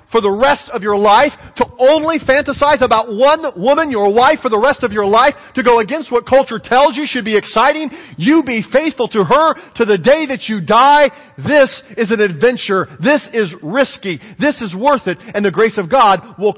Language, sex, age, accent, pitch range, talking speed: English, male, 40-59, American, 210-270 Hz, 210 wpm